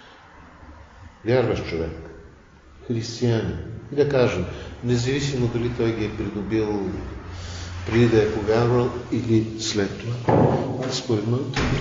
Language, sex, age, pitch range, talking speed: Bulgarian, male, 50-69, 100-125 Hz, 110 wpm